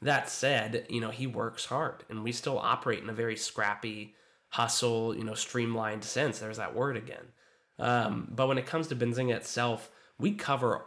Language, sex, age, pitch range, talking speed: English, male, 20-39, 110-125 Hz, 190 wpm